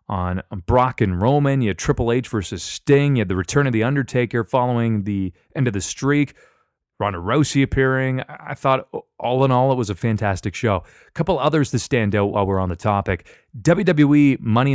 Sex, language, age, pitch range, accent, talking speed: male, English, 30-49, 100-135 Hz, American, 200 wpm